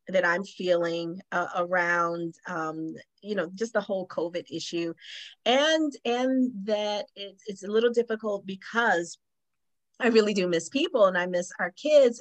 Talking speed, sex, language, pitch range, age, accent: 155 wpm, female, English, 185-235 Hz, 40-59, American